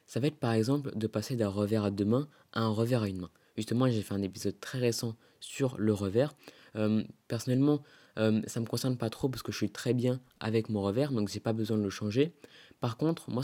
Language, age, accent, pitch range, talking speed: French, 20-39, French, 110-130 Hz, 255 wpm